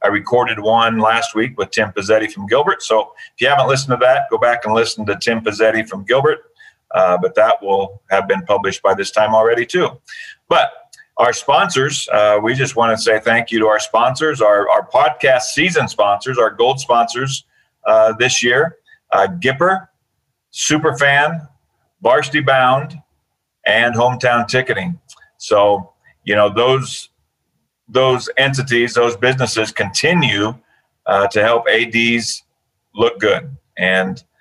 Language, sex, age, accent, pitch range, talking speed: English, male, 40-59, American, 110-145 Hz, 150 wpm